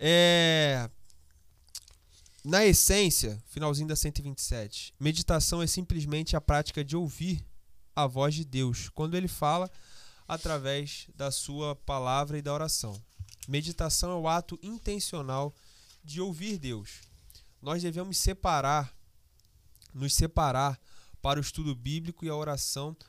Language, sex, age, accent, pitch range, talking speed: Portuguese, male, 20-39, Brazilian, 115-155 Hz, 120 wpm